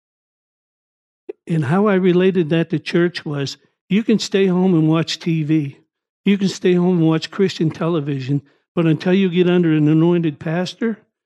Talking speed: 165 wpm